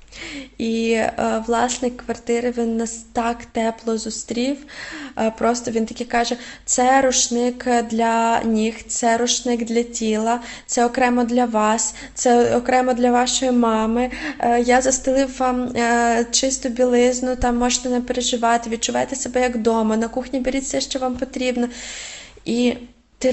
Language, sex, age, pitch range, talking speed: Ukrainian, female, 20-39, 230-250 Hz, 140 wpm